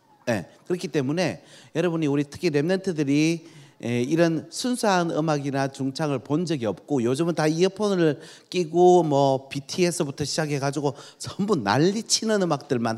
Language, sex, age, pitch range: Korean, male, 40-59, 120-180 Hz